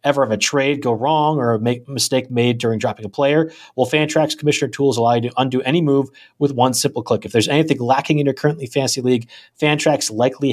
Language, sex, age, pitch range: English, male, 30-49, 125-150 Hz